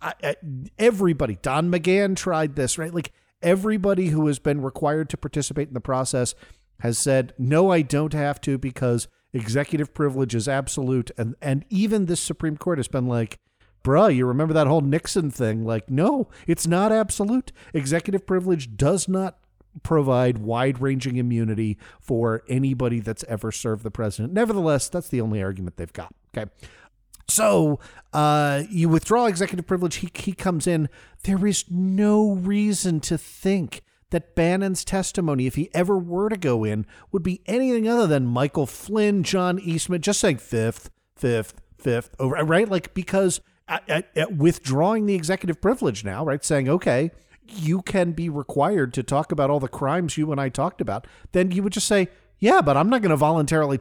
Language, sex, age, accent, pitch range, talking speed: English, male, 50-69, American, 130-185 Hz, 175 wpm